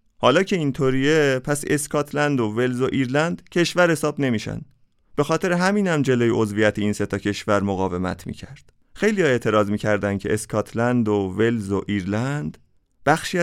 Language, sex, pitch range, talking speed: Persian, male, 100-140 Hz, 150 wpm